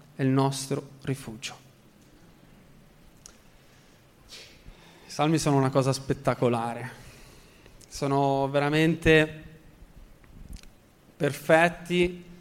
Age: 20-39